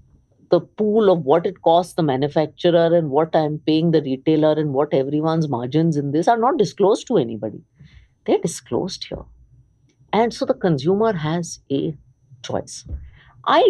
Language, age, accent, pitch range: English, 50-69, Indian, 120-165 Hz